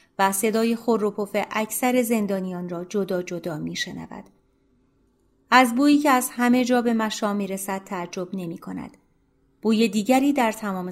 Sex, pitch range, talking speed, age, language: female, 180-245 Hz, 145 wpm, 30-49, Persian